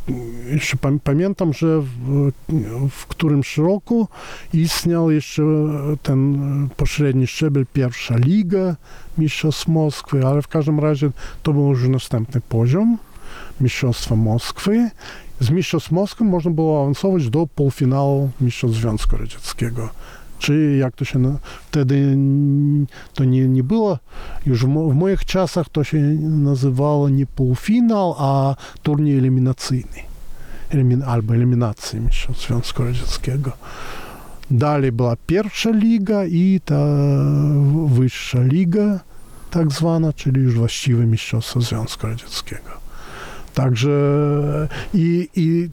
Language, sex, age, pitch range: Polish, male, 40-59, 130-160 Hz